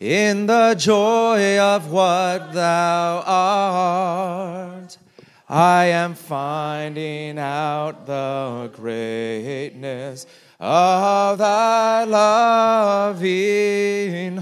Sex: male